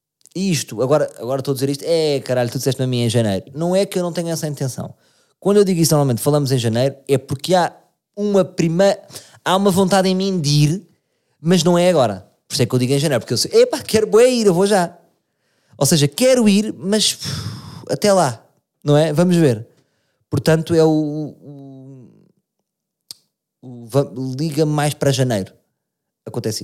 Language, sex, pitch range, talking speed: Portuguese, male, 125-175 Hz, 190 wpm